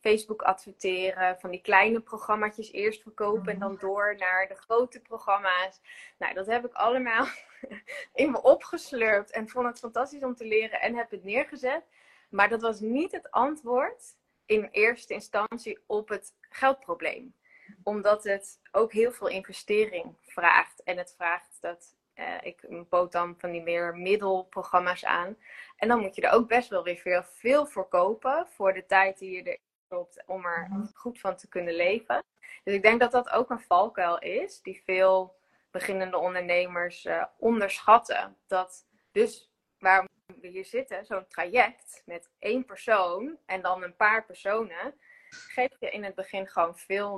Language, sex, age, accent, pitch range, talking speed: Dutch, female, 20-39, Dutch, 185-235 Hz, 165 wpm